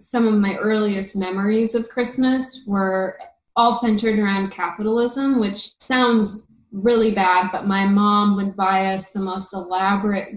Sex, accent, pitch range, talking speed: female, American, 195-235 Hz, 145 wpm